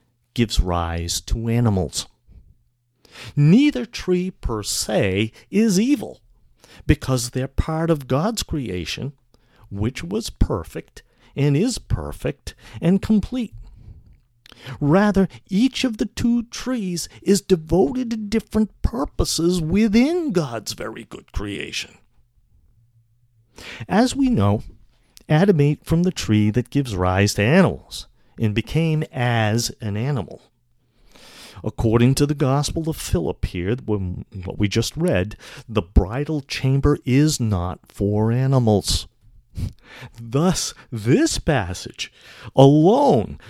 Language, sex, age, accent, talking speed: English, male, 50-69, American, 110 wpm